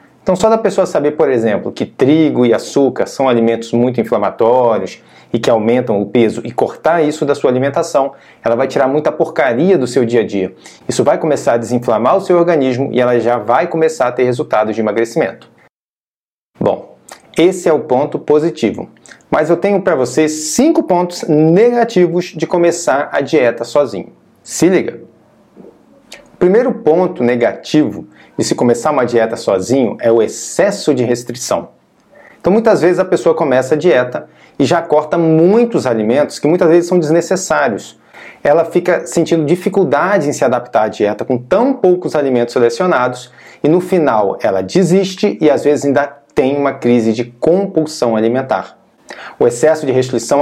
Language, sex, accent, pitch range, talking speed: Portuguese, male, Brazilian, 125-175 Hz, 170 wpm